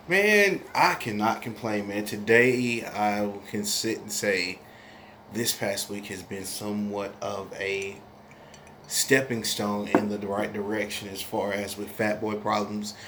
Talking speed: 145 wpm